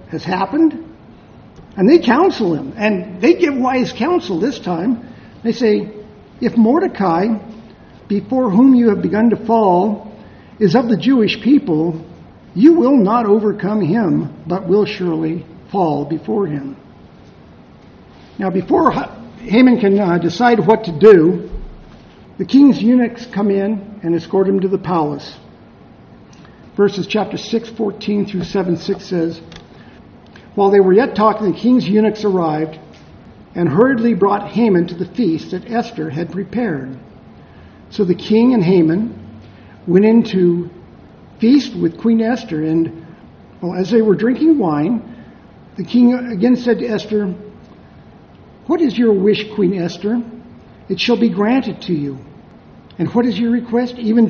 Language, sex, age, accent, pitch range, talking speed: English, male, 50-69, American, 180-235 Hz, 145 wpm